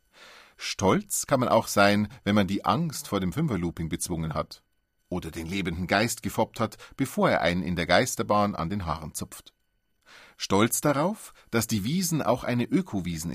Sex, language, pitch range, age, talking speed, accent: male, German, 90-135 Hz, 40-59, 170 wpm, German